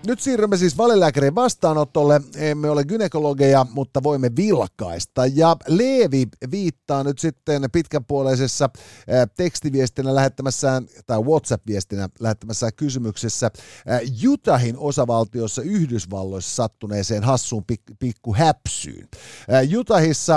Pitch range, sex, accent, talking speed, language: 115-150 Hz, male, native, 95 wpm, Finnish